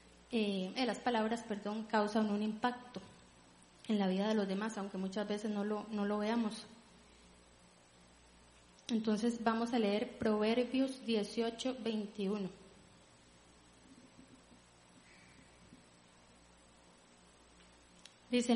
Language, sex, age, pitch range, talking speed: Spanish, female, 20-39, 190-235 Hz, 95 wpm